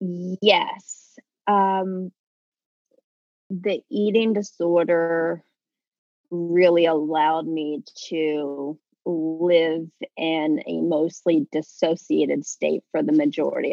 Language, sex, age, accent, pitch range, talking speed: English, female, 30-49, American, 165-200 Hz, 80 wpm